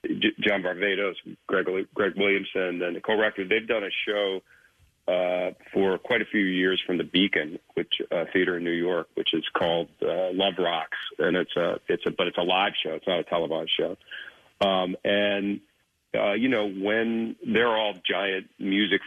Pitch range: 85-100 Hz